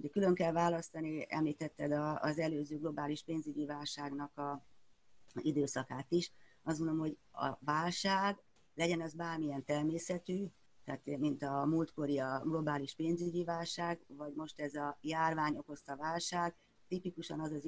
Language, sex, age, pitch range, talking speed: Hungarian, female, 30-49, 145-165 Hz, 130 wpm